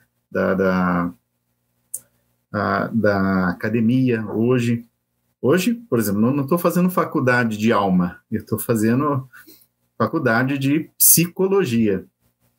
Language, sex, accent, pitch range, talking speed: Portuguese, male, Brazilian, 100-135 Hz, 100 wpm